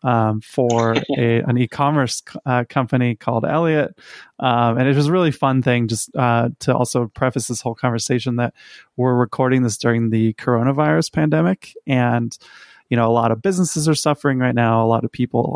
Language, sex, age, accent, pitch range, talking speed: English, male, 20-39, American, 115-125 Hz, 190 wpm